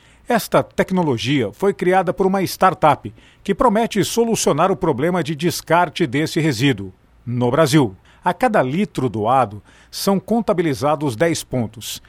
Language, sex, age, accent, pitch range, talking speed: Portuguese, male, 50-69, Brazilian, 130-180 Hz, 130 wpm